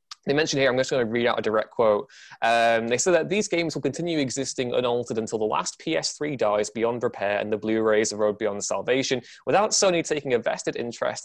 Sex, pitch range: male, 115-150 Hz